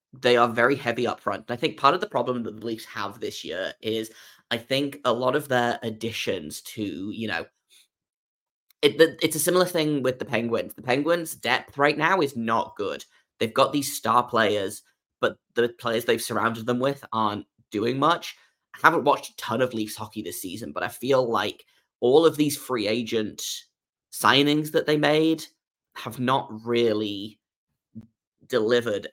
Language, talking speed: English, 175 wpm